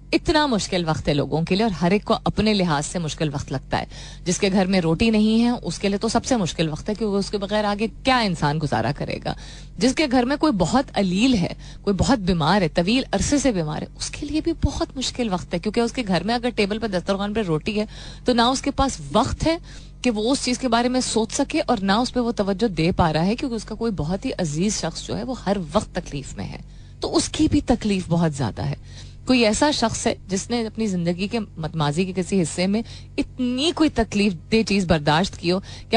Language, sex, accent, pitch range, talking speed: Hindi, female, native, 175-240 Hz, 235 wpm